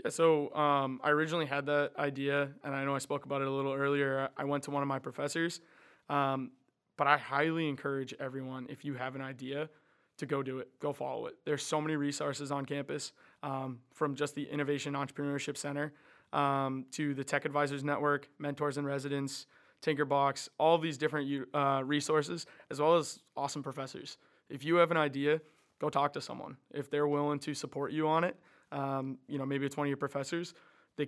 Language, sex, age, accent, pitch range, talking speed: English, male, 20-39, American, 135-150 Hz, 195 wpm